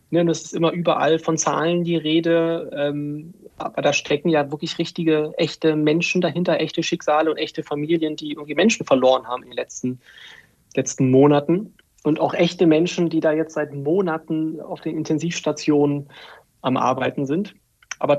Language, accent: German, German